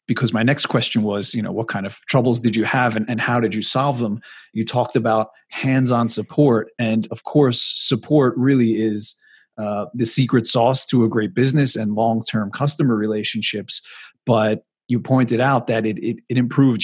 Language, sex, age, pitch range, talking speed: English, male, 30-49, 110-125 Hz, 190 wpm